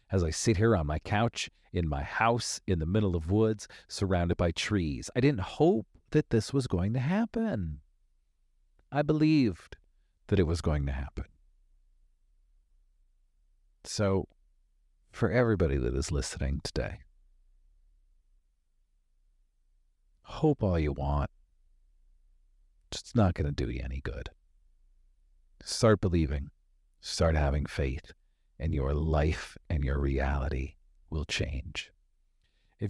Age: 50-69